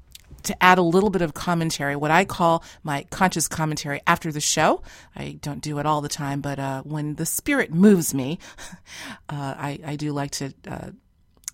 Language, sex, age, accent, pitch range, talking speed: English, female, 40-59, American, 145-180 Hz, 195 wpm